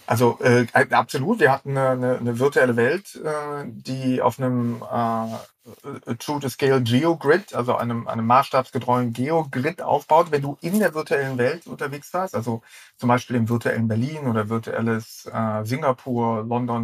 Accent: German